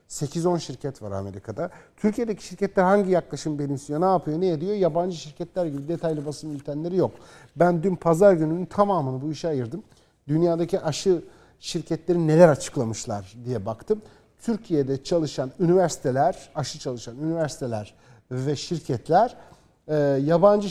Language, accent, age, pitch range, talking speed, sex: Turkish, native, 50-69, 145-190 Hz, 130 wpm, male